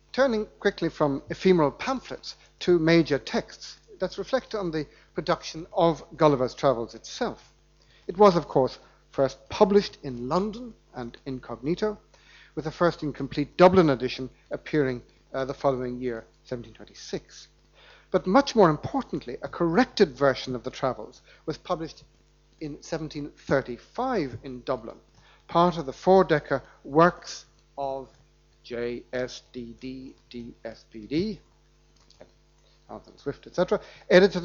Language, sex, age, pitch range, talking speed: English, male, 60-79, 130-180 Hz, 130 wpm